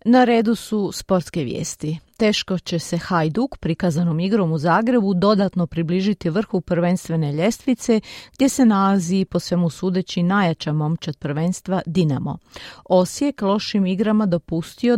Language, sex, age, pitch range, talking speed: Croatian, female, 40-59, 115-175 Hz, 130 wpm